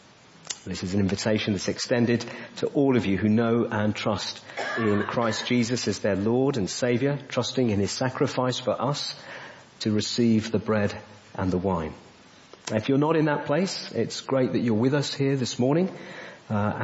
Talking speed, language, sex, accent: 180 wpm, English, male, British